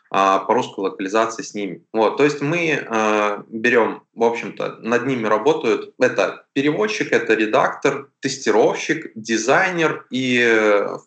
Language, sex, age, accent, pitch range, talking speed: Russian, male, 20-39, native, 105-140 Hz, 125 wpm